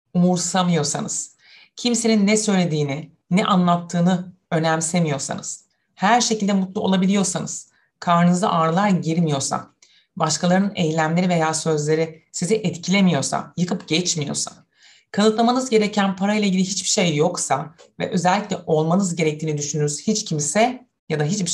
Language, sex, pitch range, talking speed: Turkish, female, 155-205 Hz, 110 wpm